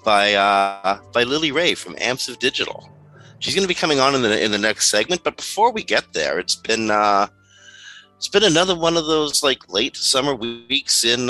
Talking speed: 210 wpm